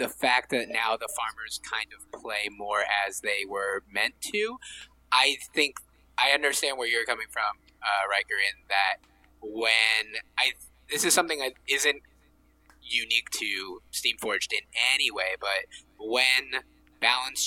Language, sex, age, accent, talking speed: English, male, 20-39, American, 150 wpm